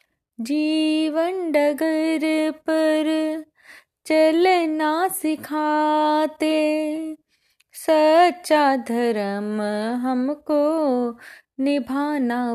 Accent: native